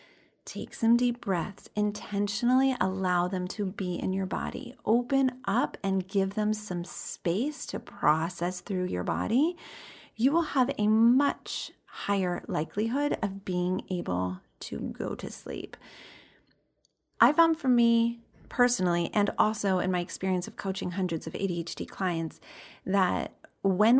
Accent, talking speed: American, 140 wpm